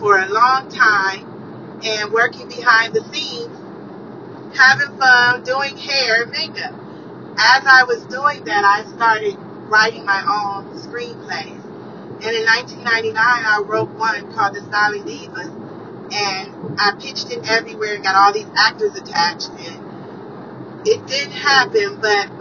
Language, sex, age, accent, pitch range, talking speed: English, female, 30-49, American, 205-280 Hz, 140 wpm